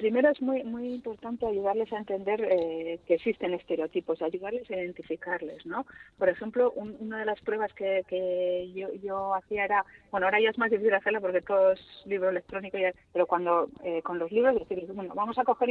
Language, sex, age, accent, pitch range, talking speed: Spanish, female, 30-49, Spanish, 180-230 Hz, 205 wpm